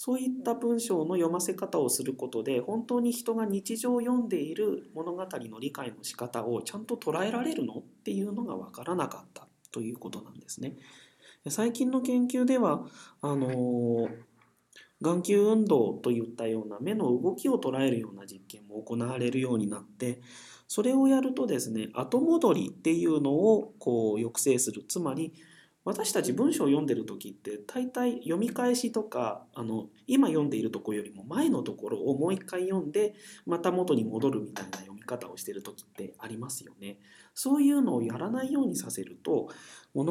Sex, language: male, Japanese